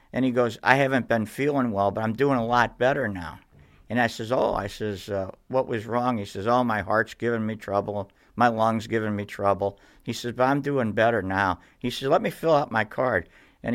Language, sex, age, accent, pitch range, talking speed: English, male, 50-69, American, 100-125 Hz, 235 wpm